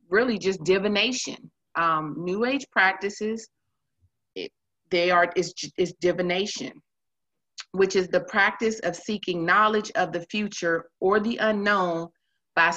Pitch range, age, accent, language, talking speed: 165-205 Hz, 30-49, American, English, 125 wpm